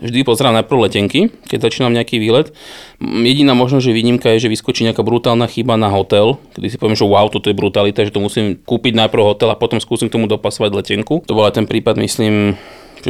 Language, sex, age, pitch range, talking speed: Slovak, male, 20-39, 105-120 Hz, 215 wpm